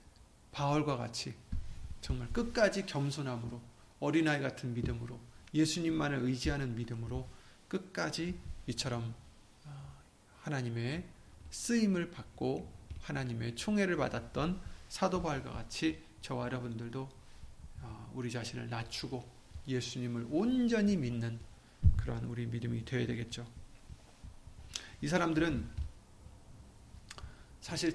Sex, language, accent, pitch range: male, Korean, native, 115-155 Hz